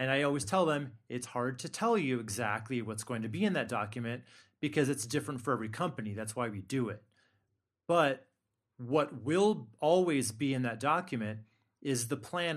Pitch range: 115-150 Hz